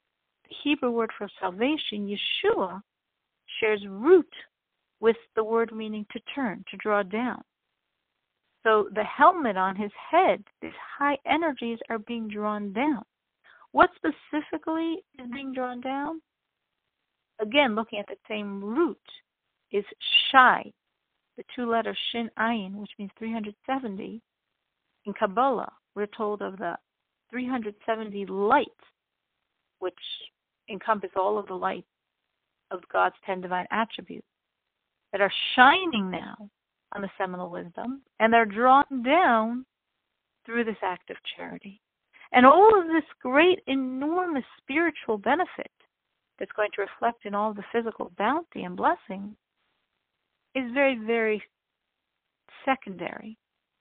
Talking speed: 125 wpm